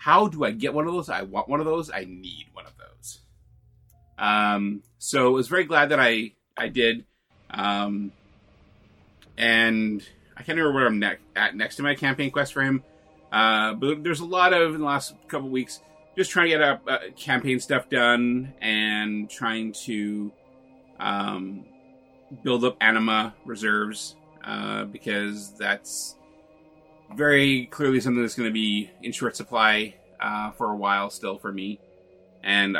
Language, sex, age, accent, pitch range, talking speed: English, male, 30-49, American, 105-145 Hz, 170 wpm